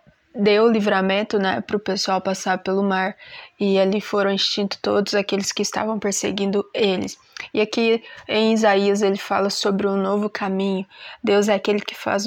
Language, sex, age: Portuguese, female, 20-39